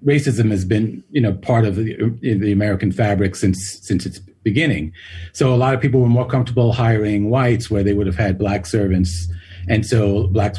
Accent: American